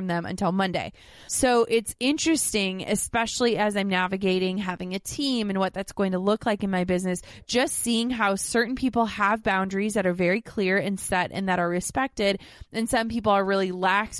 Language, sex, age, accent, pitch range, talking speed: English, female, 20-39, American, 185-225 Hz, 195 wpm